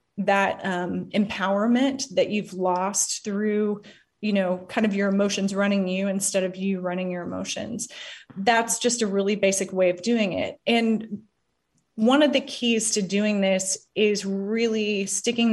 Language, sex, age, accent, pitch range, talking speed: English, female, 30-49, American, 190-215 Hz, 160 wpm